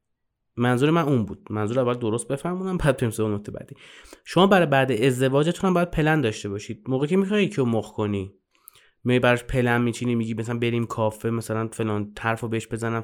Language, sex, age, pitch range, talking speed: Persian, male, 20-39, 115-145 Hz, 180 wpm